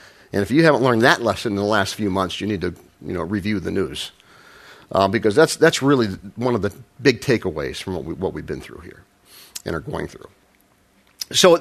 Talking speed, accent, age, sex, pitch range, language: 220 wpm, American, 50-69, male, 105-155 Hz, English